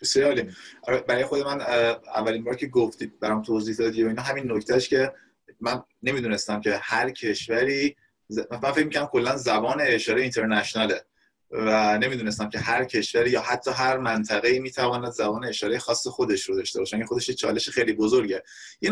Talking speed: 160 wpm